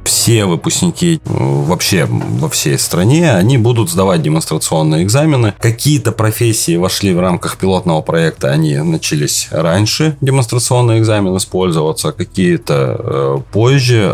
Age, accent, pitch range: 30-49, native, 95-135 Hz